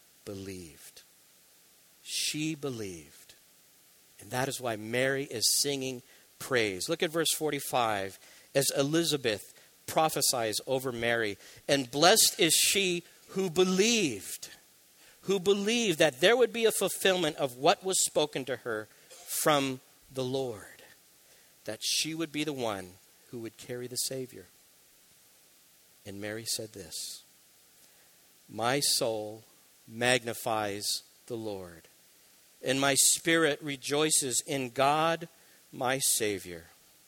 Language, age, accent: English, 50-69, American